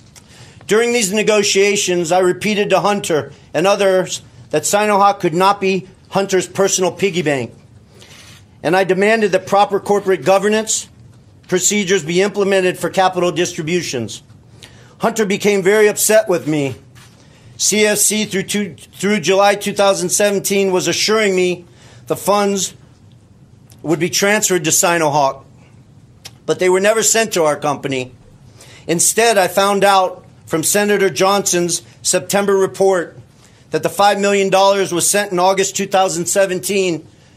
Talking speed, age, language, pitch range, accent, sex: 125 wpm, 40-59, English, 135-200 Hz, American, male